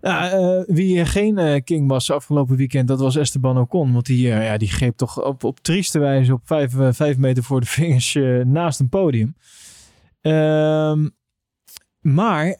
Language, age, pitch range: Dutch, 20-39, 130-165 Hz